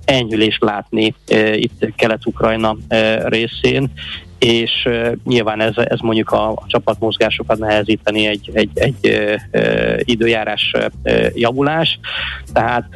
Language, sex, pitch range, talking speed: Hungarian, male, 110-130 Hz, 110 wpm